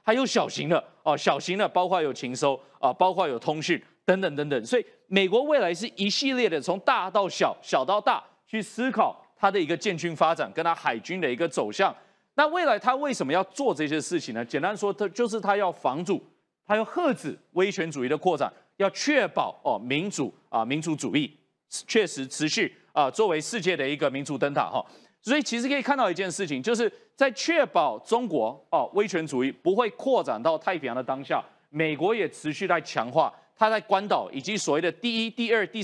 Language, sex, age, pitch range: Chinese, male, 30-49, 165-245 Hz